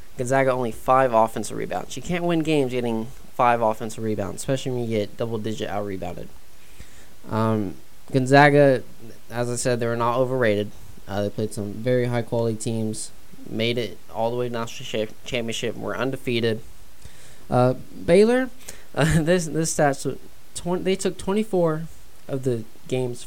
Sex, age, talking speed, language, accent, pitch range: male, 20-39, 155 wpm, English, American, 115-140 Hz